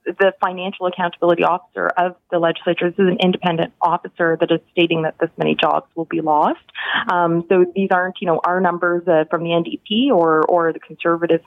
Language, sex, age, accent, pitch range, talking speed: English, female, 30-49, American, 170-200 Hz, 200 wpm